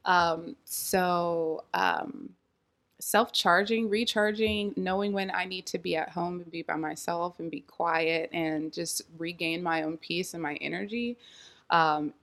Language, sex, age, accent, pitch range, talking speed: English, female, 20-39, American, 170-205 Hz, 145 wpm